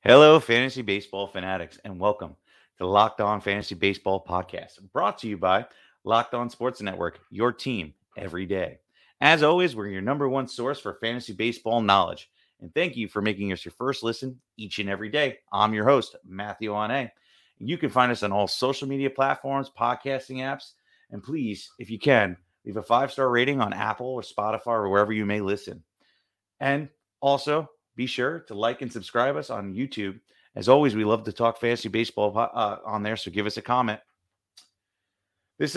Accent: American